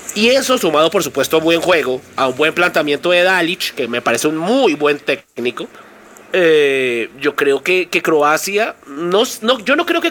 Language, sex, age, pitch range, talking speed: Spanish, male, 30-49, 155-215 Hz, 190 wpm